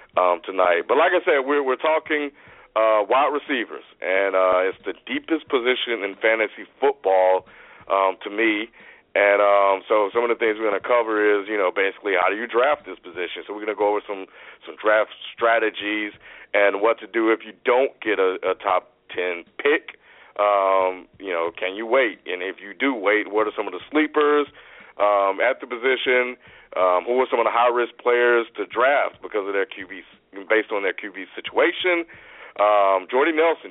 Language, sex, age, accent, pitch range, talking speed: English, male, 40-59, American, 100-130 Hz, 195 wpm